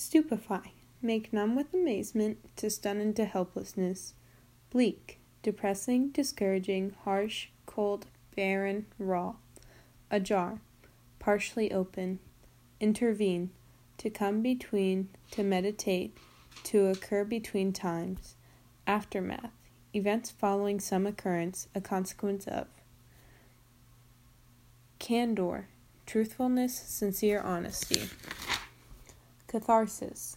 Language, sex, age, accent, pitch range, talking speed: English, female, 20-39, American, 180-210 Hz, 85 wpm